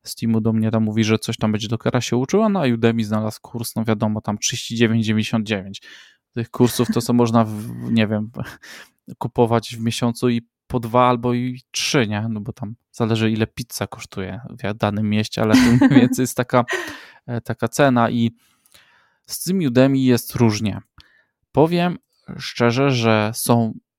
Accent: native